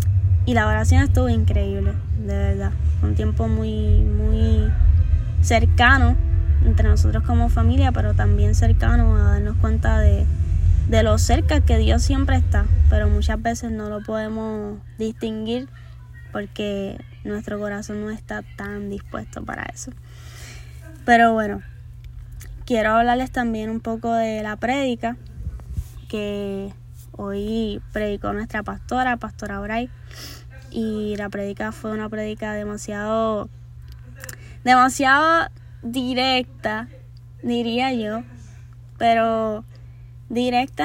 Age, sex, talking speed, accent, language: 10-29, female, 110 wpm, American, Spanish